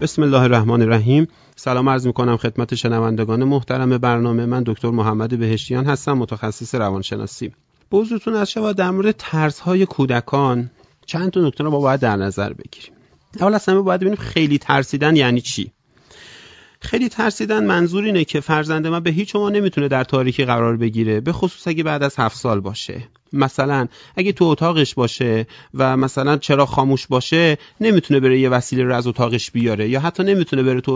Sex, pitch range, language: male, 120-175 Hz, Persian